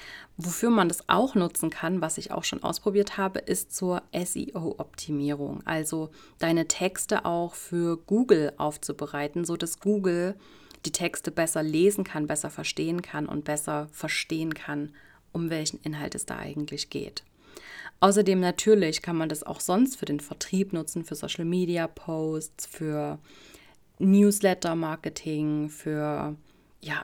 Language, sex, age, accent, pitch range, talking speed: German, female, 30-49, German, 150-185 Hz, 135 wpm